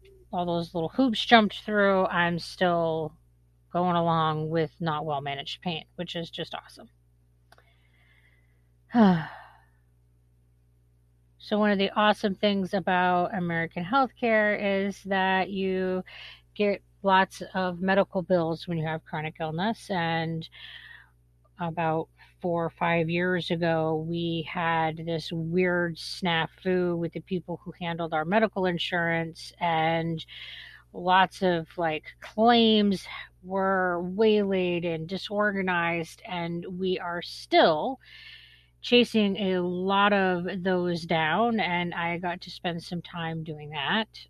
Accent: American